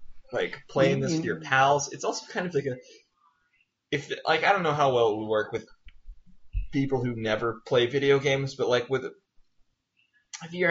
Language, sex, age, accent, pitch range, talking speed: English, male, 20-39, American, 110-145 Hz, 190 wpm